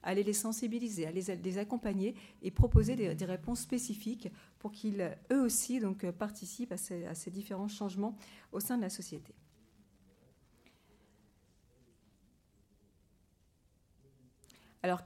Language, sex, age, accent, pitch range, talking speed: French, female, 40-59, French, 175-220 Hz, 120 wpm